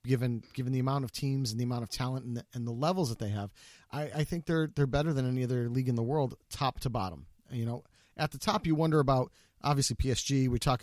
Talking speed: 260 wpm